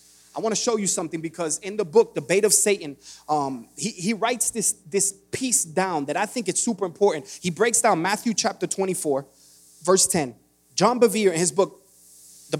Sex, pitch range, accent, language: male, 150-230 Hz, American, English